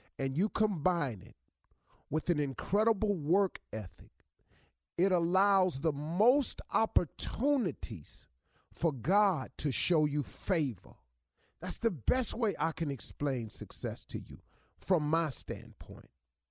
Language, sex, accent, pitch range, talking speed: English, male, American, 135-200 Hz, 120 wpm